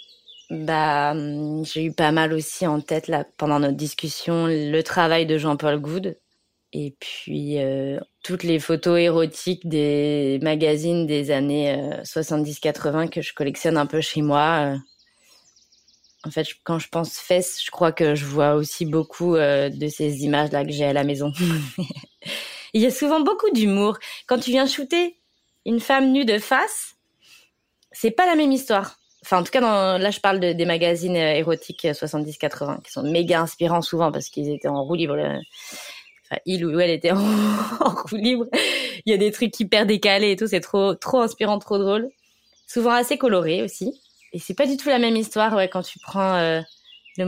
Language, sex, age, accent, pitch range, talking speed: French, female, 20-39, French, 155-215 Hz, 185 wpm